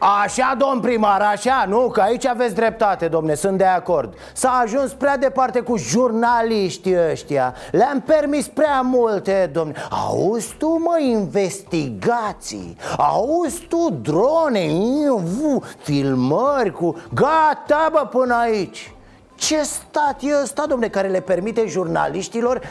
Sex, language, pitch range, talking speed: male, Romanian, 175-275 Hz, 125 wpm